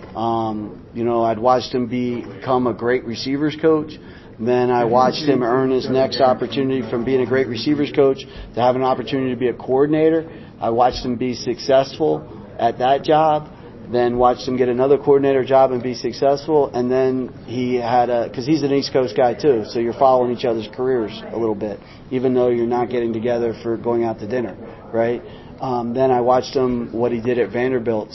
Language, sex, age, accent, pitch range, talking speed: English, male, 40-59, American, 115-130 Hz, 200 wpm